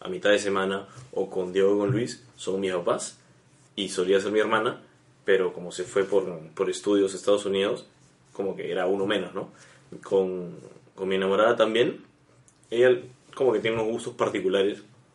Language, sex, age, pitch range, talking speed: Spanish, male, 20-39, 95-105 Hz, 180 wpm